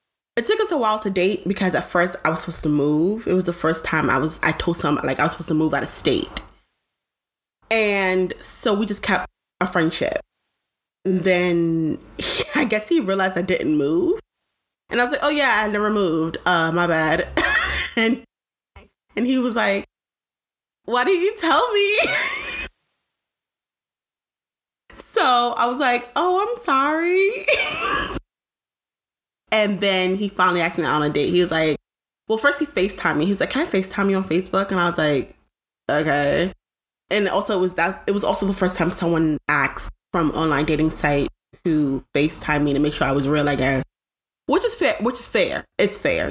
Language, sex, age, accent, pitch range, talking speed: English, female, 20-39, American, 165-225 Hz, 185 wpm